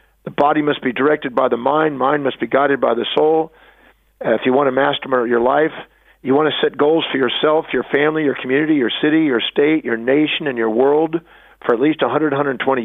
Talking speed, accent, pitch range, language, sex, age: 220 wpm, American, 130-160 Hz, English, male, 50-69